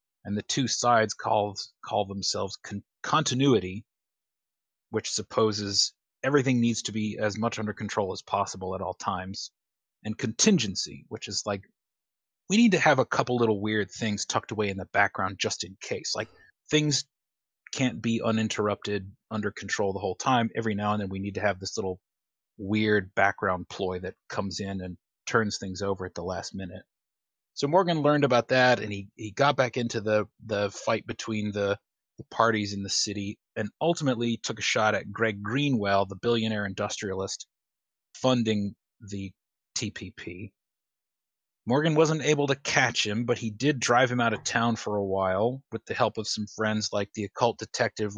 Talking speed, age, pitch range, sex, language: 175 wpm, 30-49, 100-115 Hz, male, English